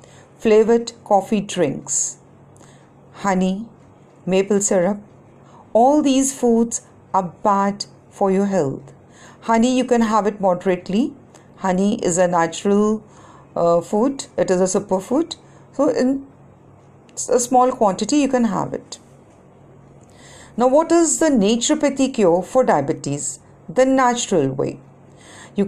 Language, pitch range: Punjabi, 185-250 Hz